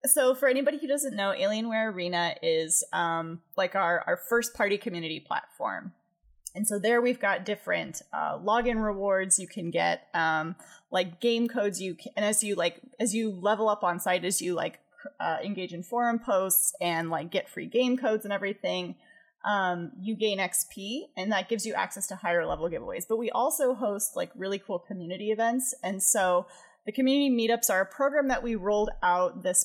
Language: English